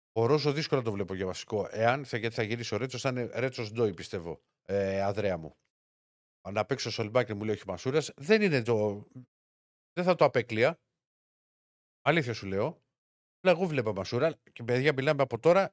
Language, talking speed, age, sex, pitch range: Greek, 175 wpm, 50-69, male, 100-135 Hz